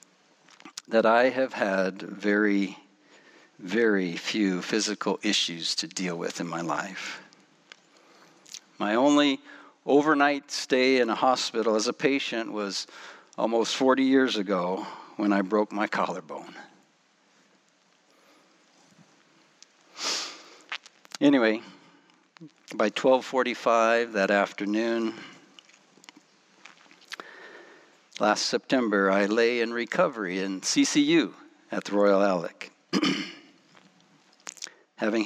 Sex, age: male, 60-79